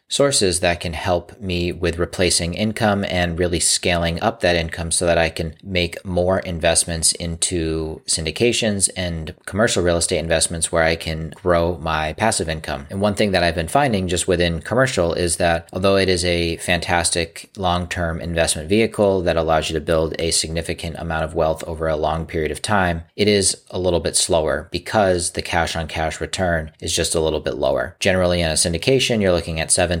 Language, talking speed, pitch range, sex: English, 195 wpm, 80-90 Hz, male